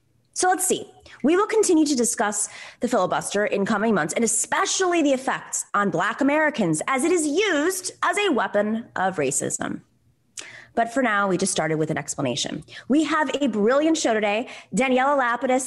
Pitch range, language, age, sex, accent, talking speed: 185-290 Hz, English, 20-39, female, American, 175 wpm